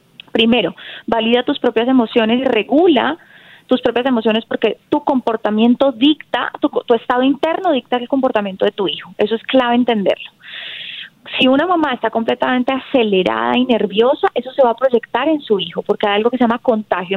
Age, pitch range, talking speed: 20-39, 215-270 Hz, 180 wpm